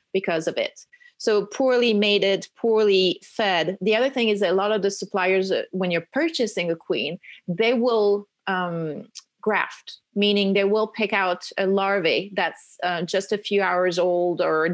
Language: English